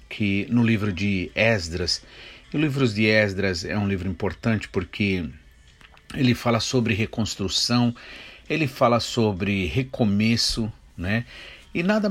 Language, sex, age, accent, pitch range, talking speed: Portuguese, male, 50-69, Brazilian, 100-130 Hz, 130 wpm